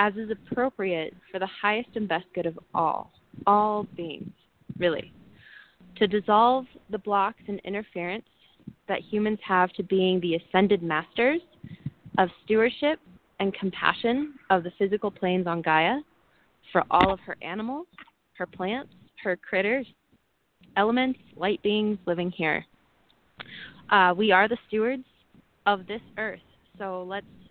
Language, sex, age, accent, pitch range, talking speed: English, female, 20-39, American, 180-210 Hz, 135 wpm